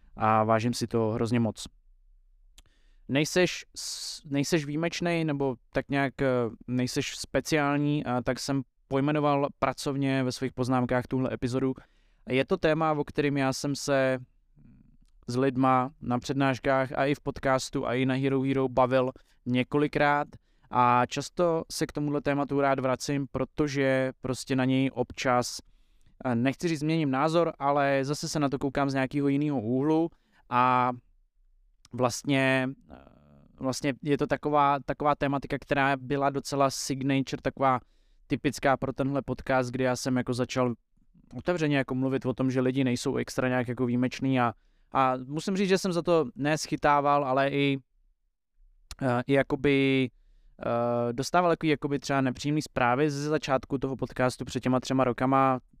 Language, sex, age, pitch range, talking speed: Czech, male, 20-39, 125-145 Hz, 140 wpm